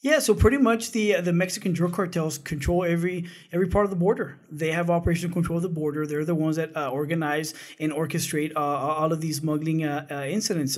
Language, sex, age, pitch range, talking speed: English, male, 20-39, 155-175 Hz, 225 wpm